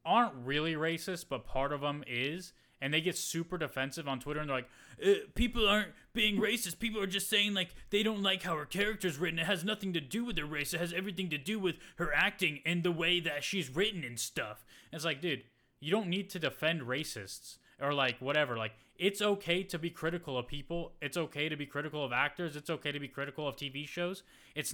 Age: 20-39